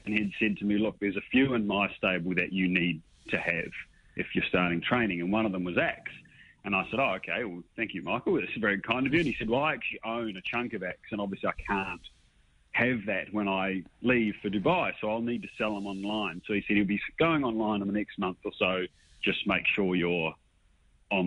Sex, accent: male, Australian